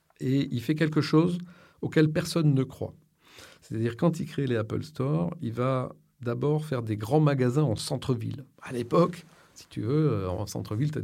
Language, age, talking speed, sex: French, 50-69, 185 wpm, male